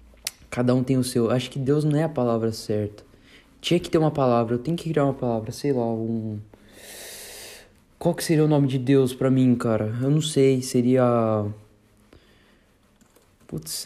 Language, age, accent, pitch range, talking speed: Portuguese, 20-39, Brazilian, 115-145 Hz, 180 wpm